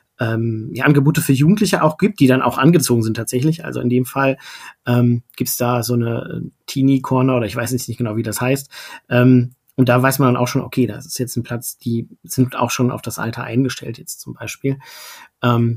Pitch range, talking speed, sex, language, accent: 125-155 Hz, 225 wpm, male, German, German